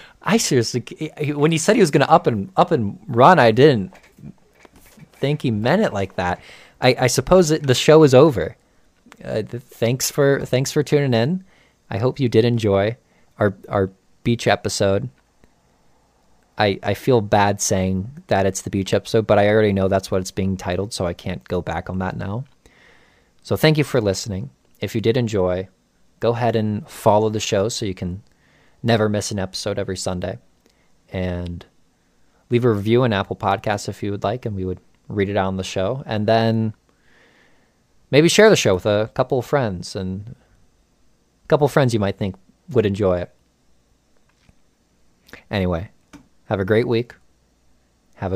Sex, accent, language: male, American, English